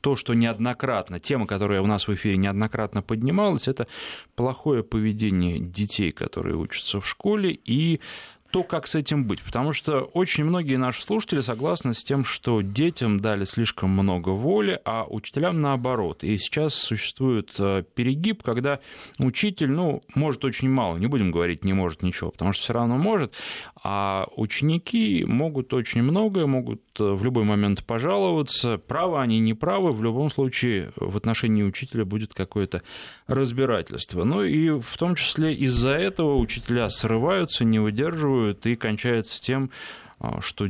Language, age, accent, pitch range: Russian, 30-49, native, 105-140 Hz